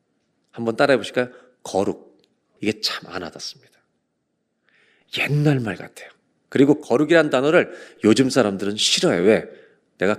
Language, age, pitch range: Korean, 40-59, 115-155 Hz